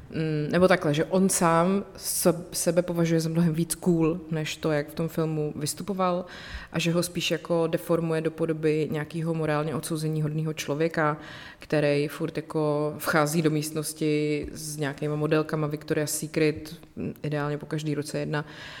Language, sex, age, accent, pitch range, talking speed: Czech, female, 30-49, native, 150-170 Hz, 150 wpm